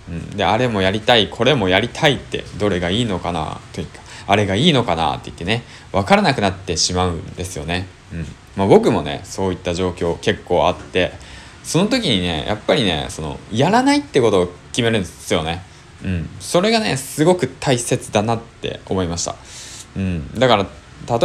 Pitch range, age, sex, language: 90-140 Hz, 20-39, male, Japanese